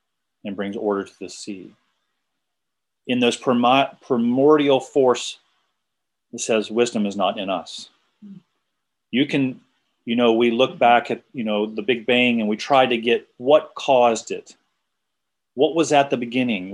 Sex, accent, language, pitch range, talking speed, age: male, American, English, 110-130 Hz, 155 wpm, 40-59